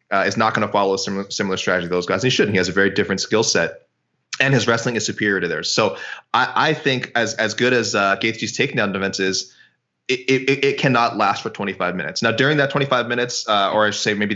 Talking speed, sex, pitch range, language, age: 265 wpm, male, 100-125 Hz, English, 20-39